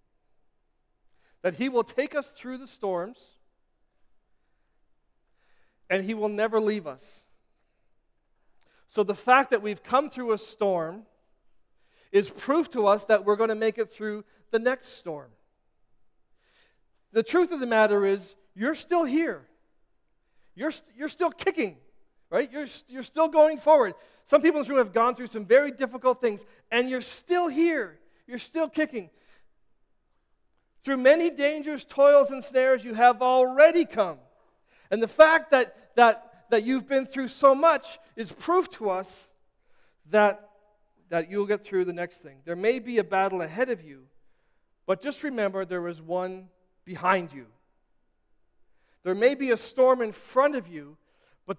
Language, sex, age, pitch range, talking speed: English, male, 40-59, 200-270 Hz, 155 wpm